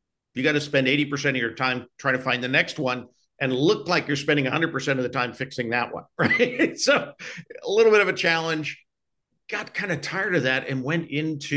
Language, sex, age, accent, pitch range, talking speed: English, male, 50-69, American, 125-150 Hz, 235 wpm